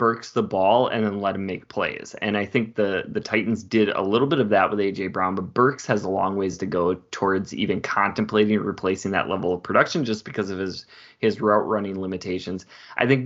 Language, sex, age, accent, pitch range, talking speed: English, male, 20-39, American, 100-115 Hz, 225 wpm